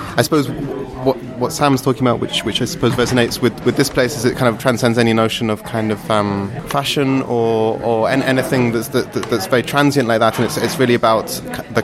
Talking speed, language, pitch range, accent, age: 225 wpm, English, 110-125 Hz, British, 20-39